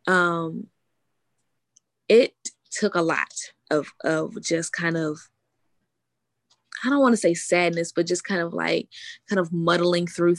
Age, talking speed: 20-39, 145 wpm